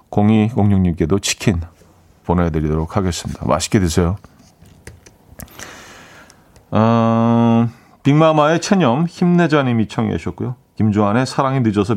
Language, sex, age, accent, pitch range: Korean, male, 40-59, native, 95-135 Hz